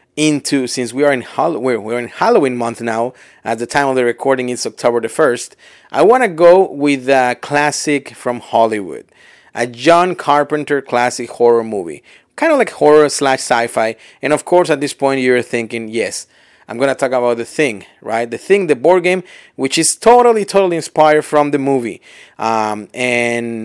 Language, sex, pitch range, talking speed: English, male, 120-150 Hz, 190 wpm